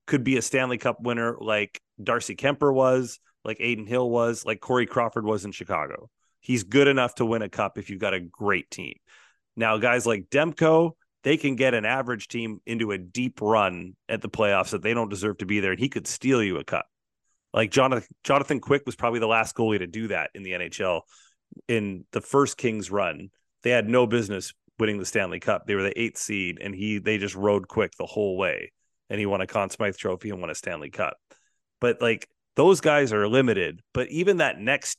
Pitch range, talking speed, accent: 105-130 Hz, 220 wpm, American